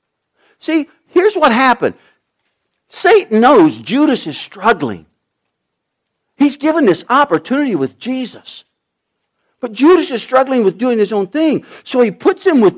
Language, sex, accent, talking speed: English, male, American, 135 wpm